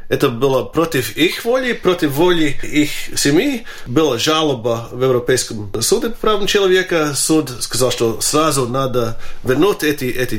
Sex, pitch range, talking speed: male, 125-160 Hz, 145 wpm